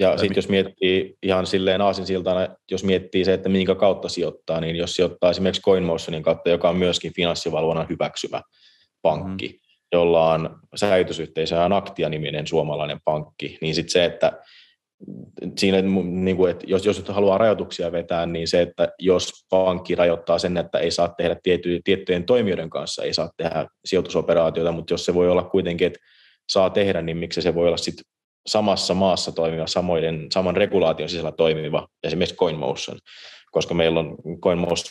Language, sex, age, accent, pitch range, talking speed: Finnish, male, 30-49, native, 85-95 Hz, 155 wpm